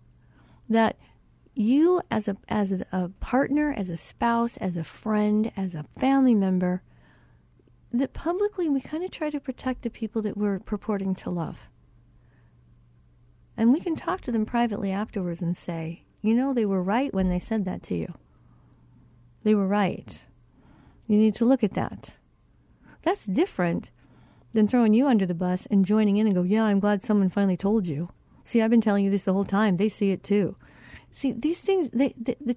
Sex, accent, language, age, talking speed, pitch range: female, American, English, 40-59, 185 wpm, 180-245 Hz